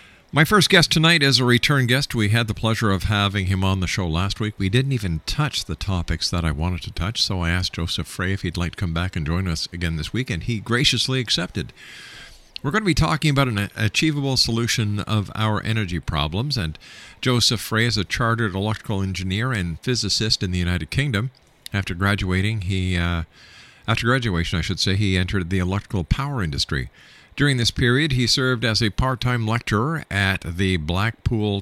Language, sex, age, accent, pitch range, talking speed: English, male, 50-69, American, 90-120 Hz, 200 wpm